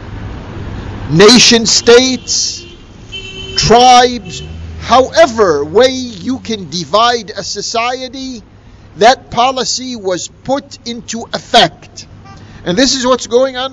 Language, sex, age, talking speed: English, male, 50-69, 95 wpm